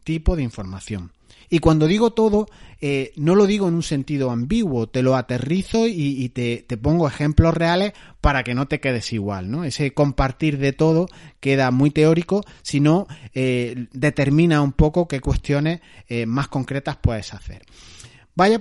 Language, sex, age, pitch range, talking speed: Spanish, male, 30-49, 120-170 Hz, 170 wpm